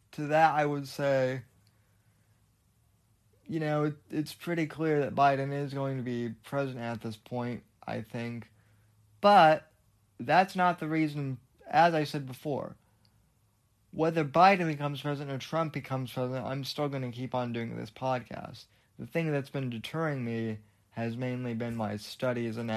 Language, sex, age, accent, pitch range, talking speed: English, male, 30-49, American, 110-140 Hz, 160 wpm